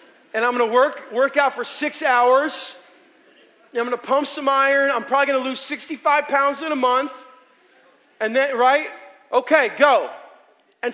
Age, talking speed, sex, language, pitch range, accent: 30-49, 175 wpm, male, English, 250-300 Hz, American